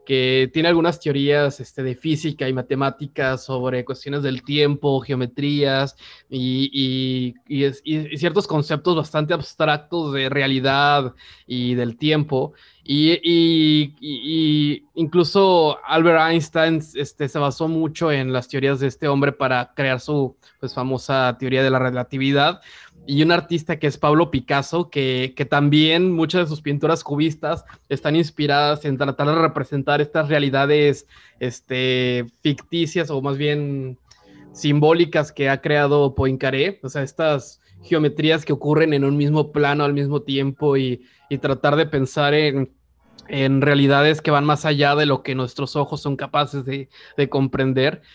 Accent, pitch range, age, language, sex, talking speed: Mexican, 135-155 Hz, 20-39, Spanish, male, 150 wpm